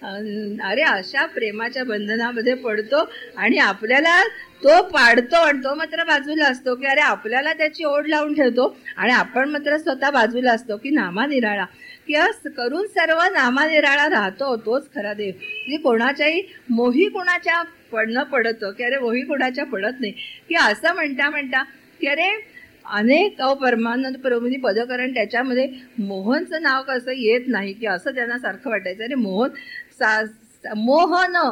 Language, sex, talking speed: Marathi, female, 145 wpm